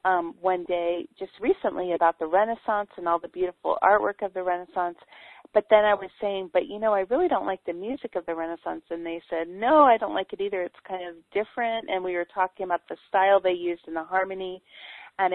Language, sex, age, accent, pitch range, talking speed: English, female, 40-59, American, 175-210 Hz, 230 wpm